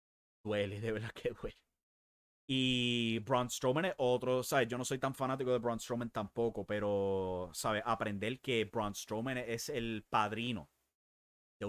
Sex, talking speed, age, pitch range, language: male, 155 wpm, 30-49, 100-130 Hz, English